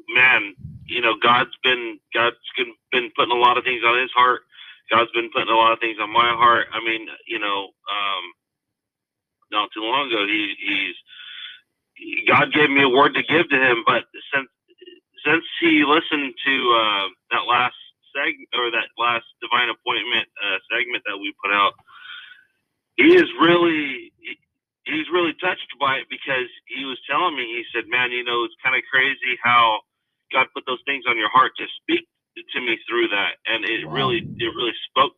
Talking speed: 190 wpm